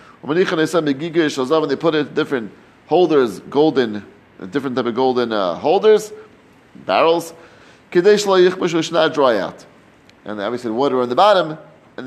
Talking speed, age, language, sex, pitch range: 120 wpm, 30-49, English, male, 145-210 Hz